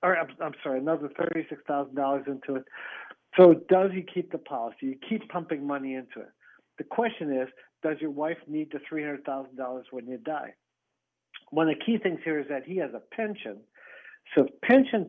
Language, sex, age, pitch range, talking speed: English, male, 50-69, 140-180 Hz, 205 wpm